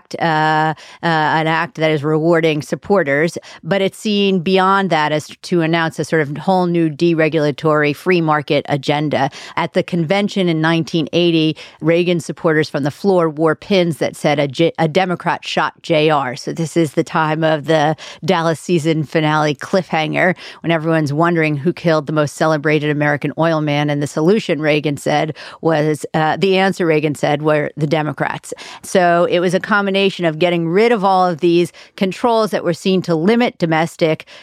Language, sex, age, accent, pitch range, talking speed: English, female, 40-59, American, 155-180 Hz, 175 wpm